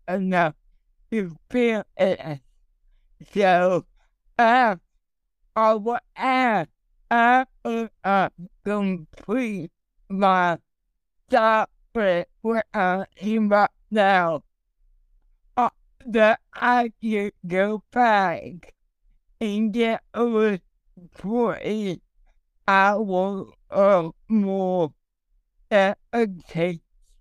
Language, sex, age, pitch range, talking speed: English, male, 60-79, 185-230 Hz, 75 wpm